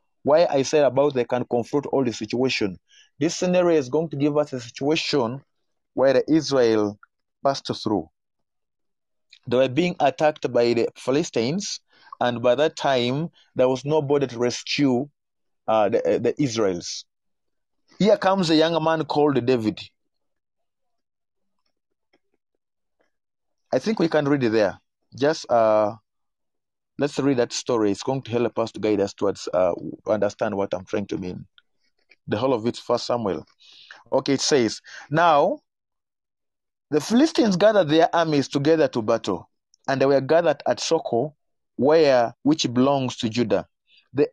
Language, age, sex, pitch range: Japanese, 30-49, male, 125-165 Hz